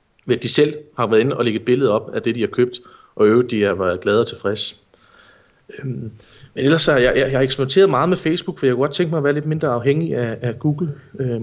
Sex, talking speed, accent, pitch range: male, 250 wpm, native, 115-150 Hz